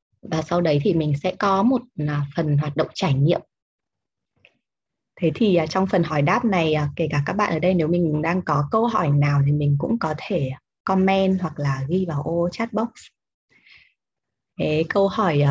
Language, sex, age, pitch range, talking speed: Vietnamese, female, 20-39, 150-195 Hz, 185 wpm